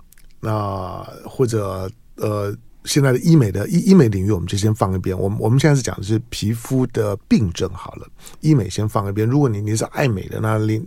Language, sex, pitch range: Chinese, male, 95-120 Hz